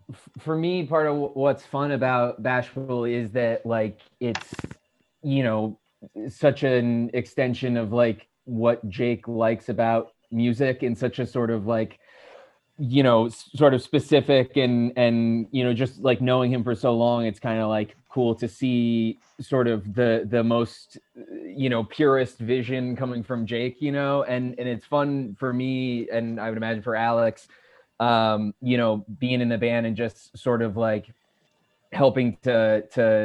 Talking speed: 170 wpm